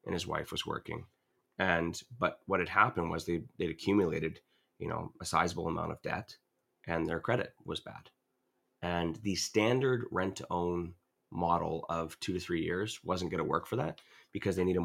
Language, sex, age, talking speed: English, male, 30-49, 190 wpm